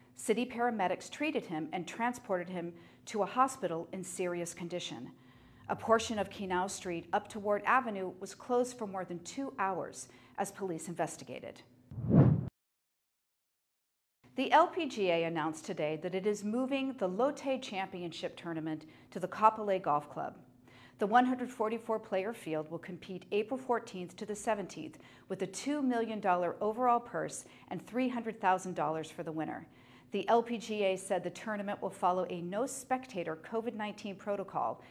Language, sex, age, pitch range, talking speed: English, female, 40-59, 175-220 Hz, 140 wpm